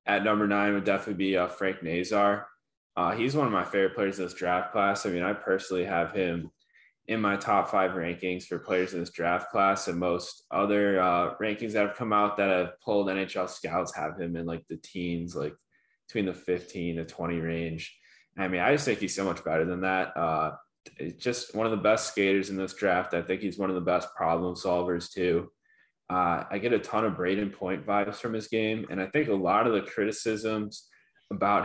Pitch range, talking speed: 90-100 Hz, 220 wpm